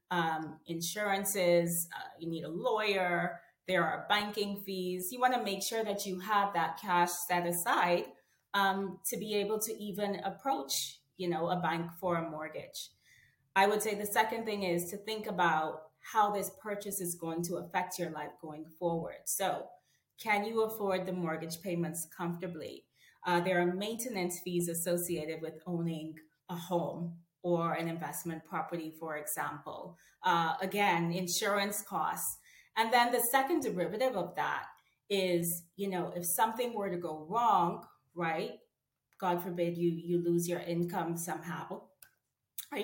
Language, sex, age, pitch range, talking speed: English, female, 30-49, 170-205 Hz, 155 wpm